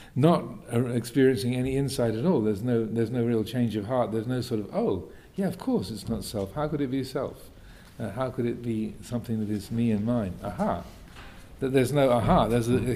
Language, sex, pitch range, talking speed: English, male, 105-125 Hz, 220 wpm